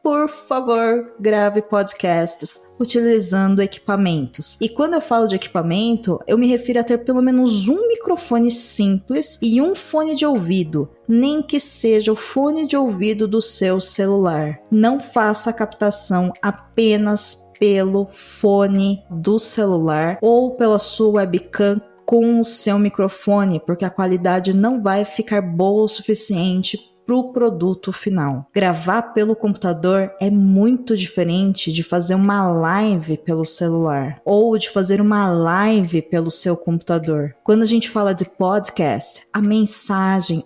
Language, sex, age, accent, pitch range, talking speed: Portuguese, female, 20-39, Brazilian, 185-230 Hz, 140 wpm